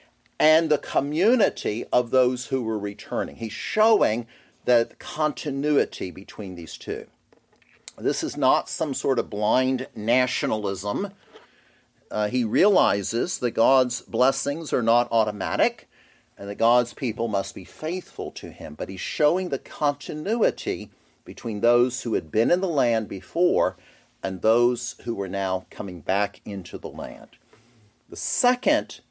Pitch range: 115-170 Hz